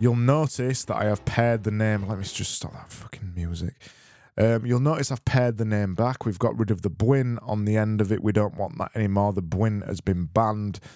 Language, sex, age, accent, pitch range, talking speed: English, male, 20-39, British, 95-115 Hz, 240 wpm